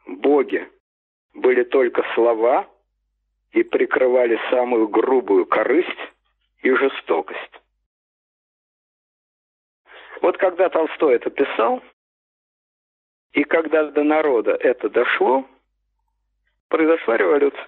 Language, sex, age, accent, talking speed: Russian, male, 50-69, native, 80 wpm